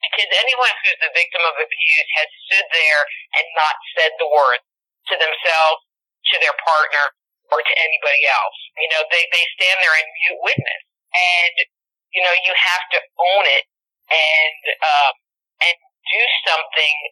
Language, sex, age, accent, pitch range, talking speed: English, male, 40-59, American, 160-190 Hz, 160 wpm